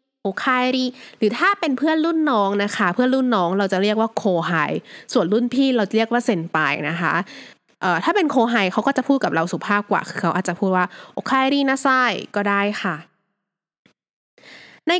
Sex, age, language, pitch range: female, 20-39, Thai, 185-250 Hz